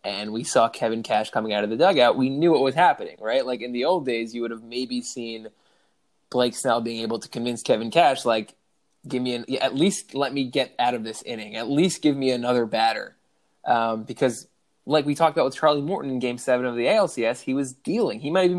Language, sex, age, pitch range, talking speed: English, male, 20-39, 115-150 Hz, 235 wpm